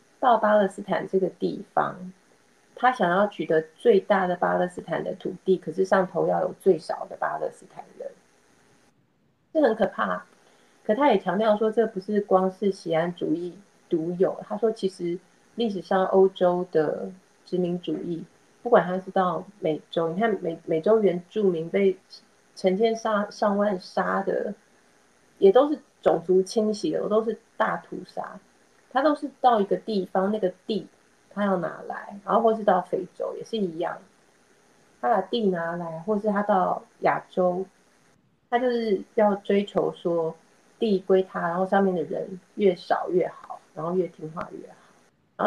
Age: 30-49